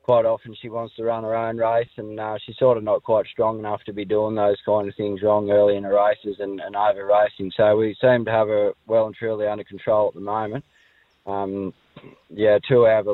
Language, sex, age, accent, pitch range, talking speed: English, male, 20-39, Australian, 100-110 Hz, 245 wpm